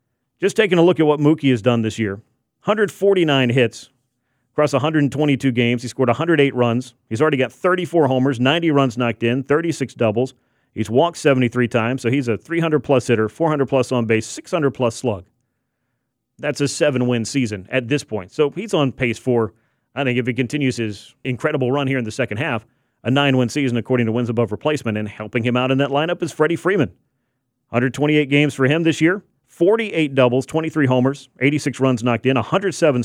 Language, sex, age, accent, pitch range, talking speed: English, male, 40-59, American, 120-145 Hz, 185 wpm